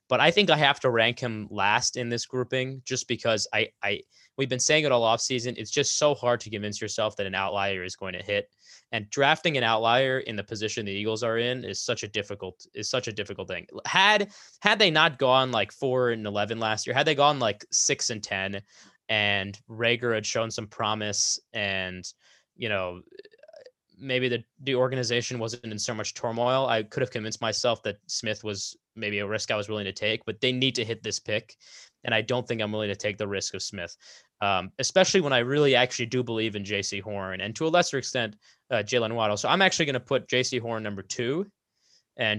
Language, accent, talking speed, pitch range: English, American, 225 wpm, 105-130 Hz